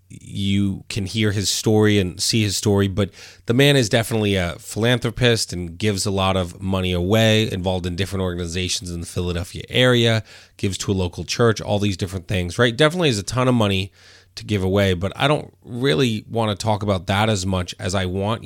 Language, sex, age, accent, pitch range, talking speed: English, male, 30-49, American, 95-115 Hz, 210 wpm